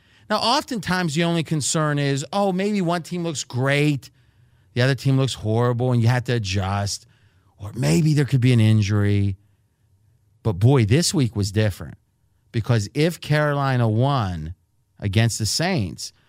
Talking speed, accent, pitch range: 155 wpm, American, 110-145 Hz